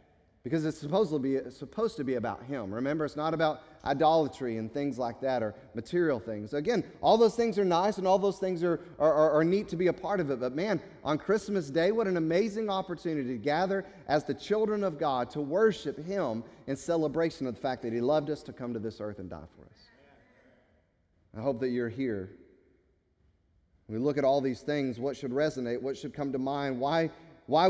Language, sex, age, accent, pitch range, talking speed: English, male, 40-59, American, 125-165 Hz, 225 wpm